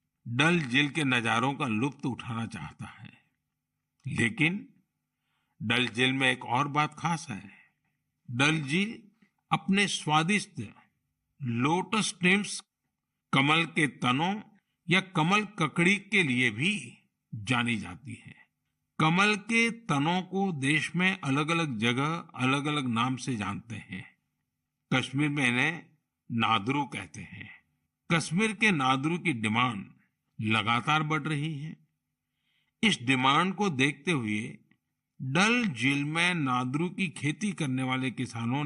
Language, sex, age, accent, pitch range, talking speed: Hindi, male, 50-69, native, 130-180 Hz, 125 wpm